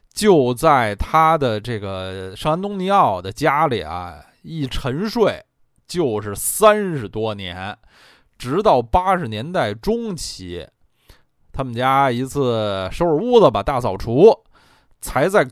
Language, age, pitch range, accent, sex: Chinese, 20-39, 105-165 Hz, native, male